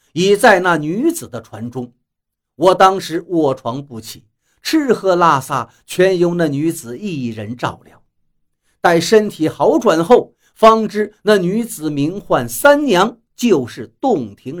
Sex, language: male, Chinese